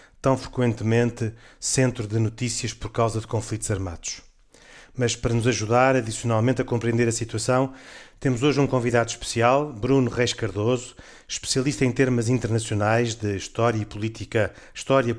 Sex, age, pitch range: male, 40-59, 110-130 Hz